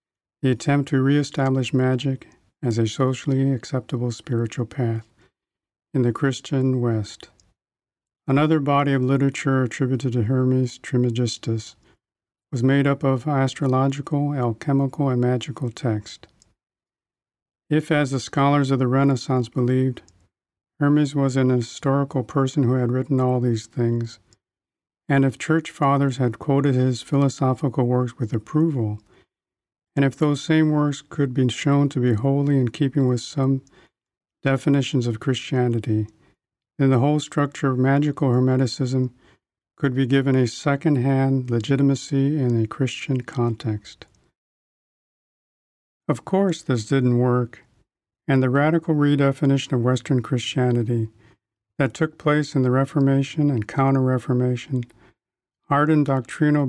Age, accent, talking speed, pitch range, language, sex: 50-69, American, 125 wpm, 120-140 Hz, English, male